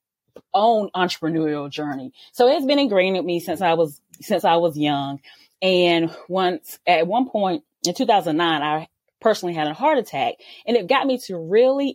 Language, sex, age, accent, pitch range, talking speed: English, female, 20-39, American, 160-190 Hz, 180 wpm